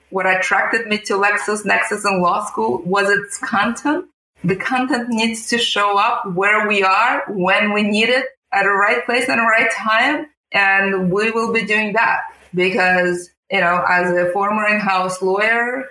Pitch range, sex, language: 180-220 Hz, female, English